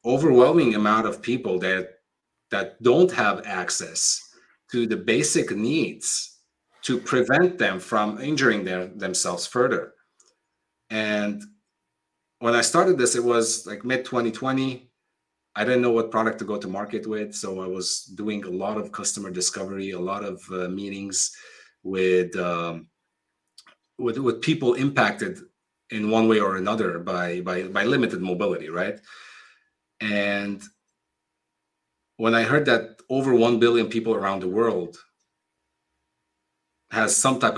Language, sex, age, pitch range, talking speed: English, male, 30-49, 90-115 Hz, 140 wpm